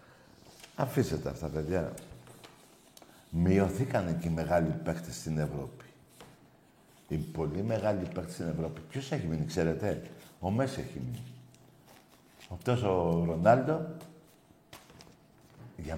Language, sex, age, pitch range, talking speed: Greek, male, 60-79, 85-130 Hz, 105 wpm